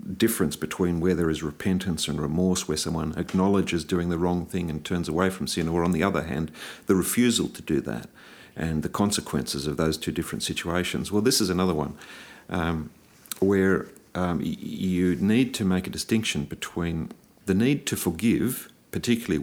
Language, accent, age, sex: English, Australian, 50-69, male